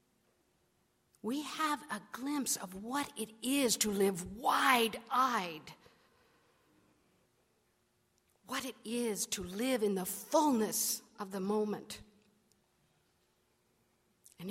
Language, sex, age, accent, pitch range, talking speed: English, female, 50-69, American, 215-290 Hz, 95 wpm